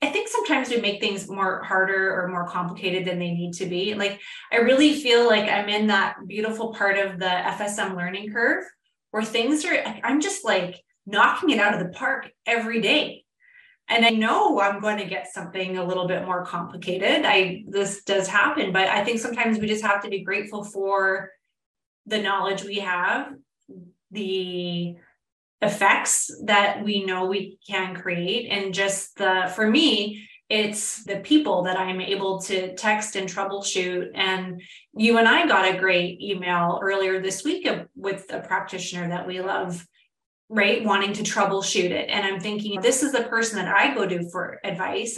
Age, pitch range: 20-39, 190-220 Hz